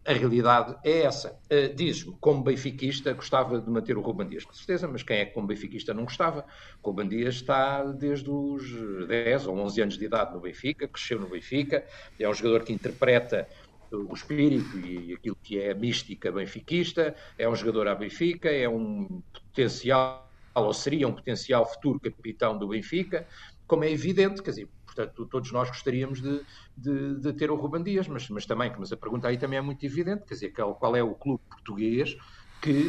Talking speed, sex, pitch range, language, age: 185 wpm, male, 110-150 Hz, Portuguese, 50-69